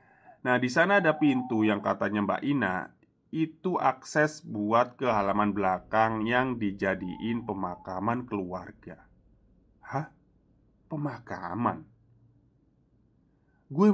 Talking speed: 95 wpm